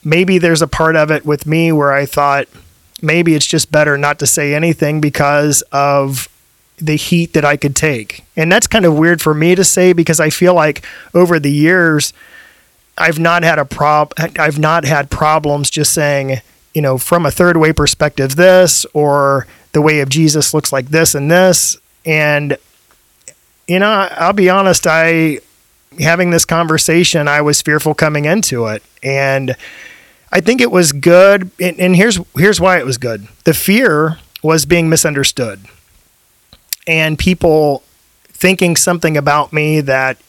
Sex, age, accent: male, 30-49, American